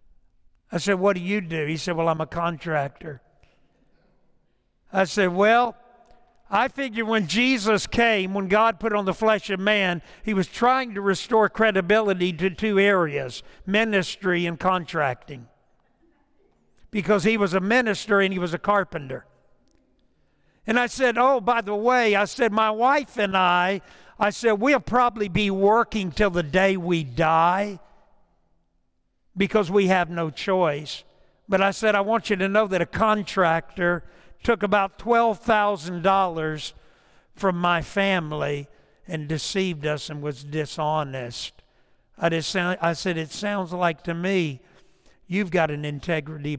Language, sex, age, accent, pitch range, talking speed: English, male, 60-79, American, 150-205 Hz, 145 wpm